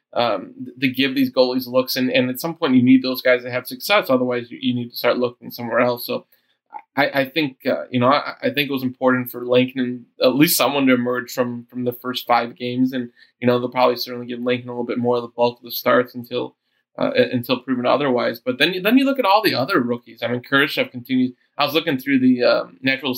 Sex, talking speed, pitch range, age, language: male, 255 wpm, 120-135 Hz, 20-39, English